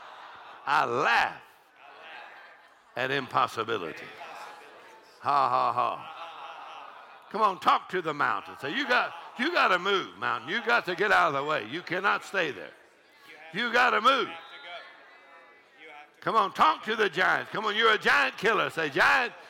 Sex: male